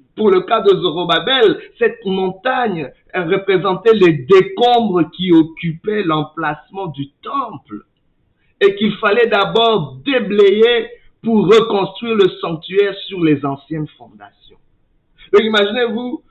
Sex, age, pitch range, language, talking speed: male, 60-79, 135-210 Hz, French, 110 wpm